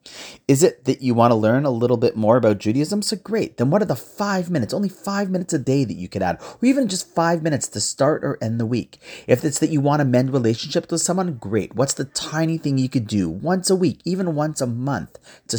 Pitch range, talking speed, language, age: 95-135 Hz, 260 wpm, English, 40-59